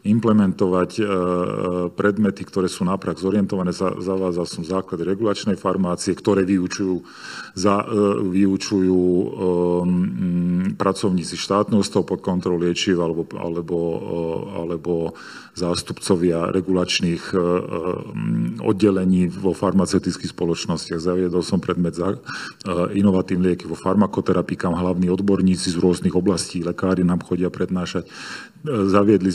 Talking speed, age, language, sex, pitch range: 100 wpm, 40-59, Slovak, male, 90-100 Hz